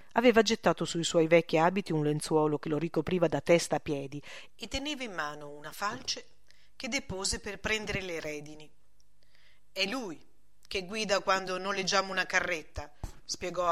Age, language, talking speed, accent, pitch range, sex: 40-59, Italian, 160 wpm, native, 150-200 Hz, female